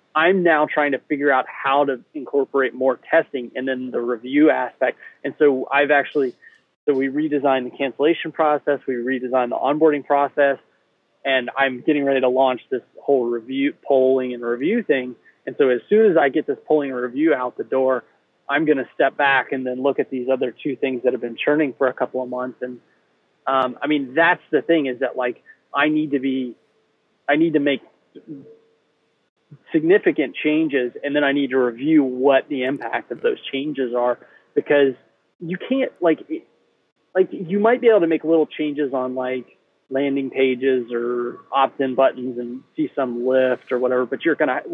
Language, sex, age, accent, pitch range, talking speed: English, male, 30-49, American, 125-150 Hz, 190 wpm